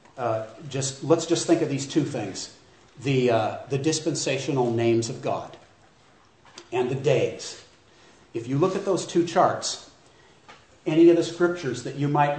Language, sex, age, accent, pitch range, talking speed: English, male, 50-69, American, 125-160 Hz, 160 wpm